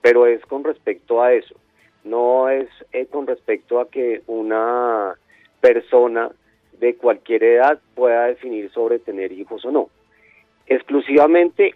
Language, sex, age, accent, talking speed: Spanish, male, 40-59, Colombian, 130 wpm